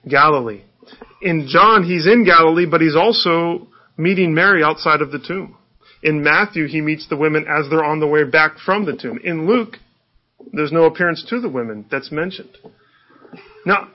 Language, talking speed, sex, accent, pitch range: English, 175 wpm, male, American, 145-190 Hz